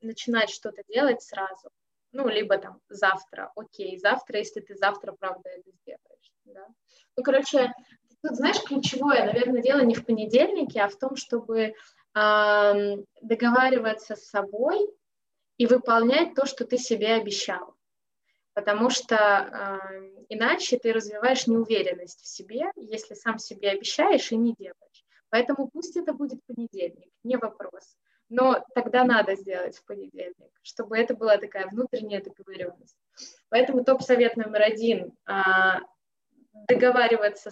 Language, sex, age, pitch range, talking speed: Russian, female, 20-39, 205-255 Hz, 130 wpm